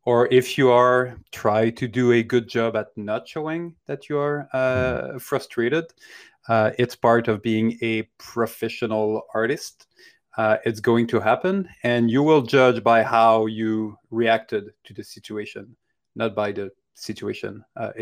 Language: English